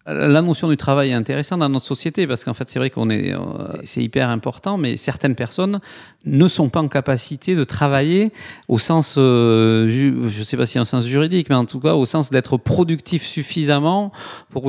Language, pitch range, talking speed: French, 125-165 Hz, 200 wpm